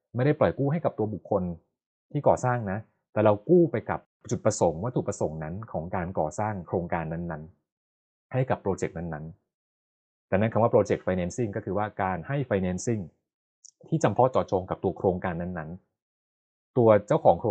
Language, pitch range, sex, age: Thai, 90-120 Hz, male, 20-39